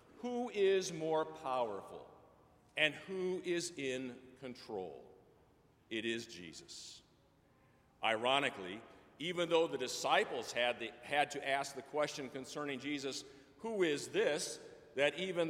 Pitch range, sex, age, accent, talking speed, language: 130-175 Hz, male, 50-69, American, 120 wpm, English